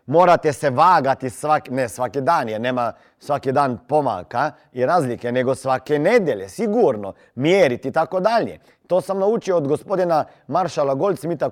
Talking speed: 145 wpm